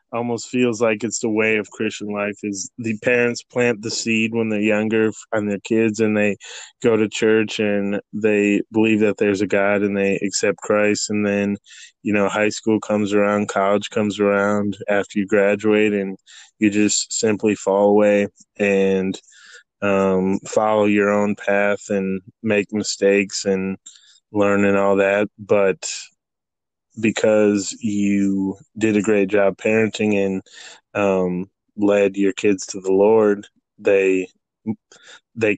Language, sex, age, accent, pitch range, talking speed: English, male, 20-39, American, 100-110 Hz, 150 wpm